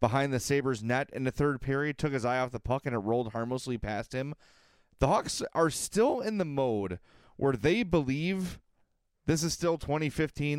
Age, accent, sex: 30-49, American, male